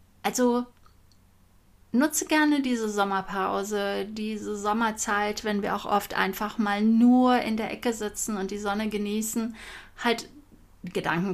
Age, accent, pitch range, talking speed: 30-49, German, 195-230 Hz, 125 wpm